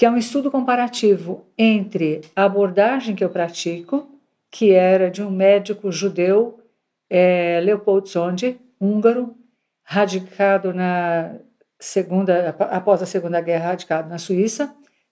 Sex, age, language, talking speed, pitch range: female, 50-69, Portuguese, 125 wpm, 185-230 Hz